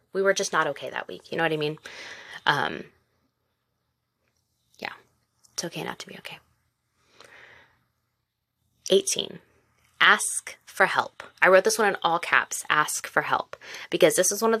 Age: 20-39